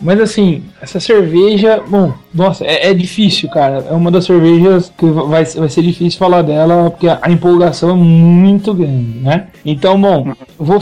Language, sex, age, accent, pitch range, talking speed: Portuguese, male, 20-39, Brazilian, 155-195 Hz, 180 wpm